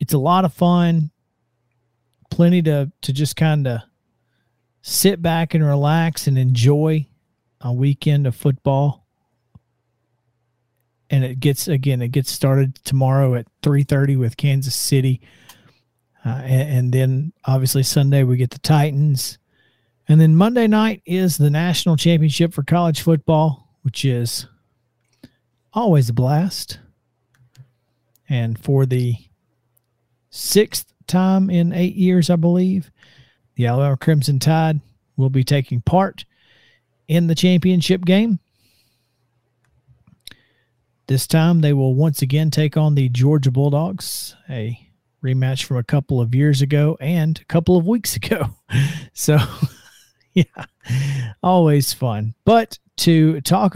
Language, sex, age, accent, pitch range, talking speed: English, male, 40-59, American, 125-160 Hz, 125 wpm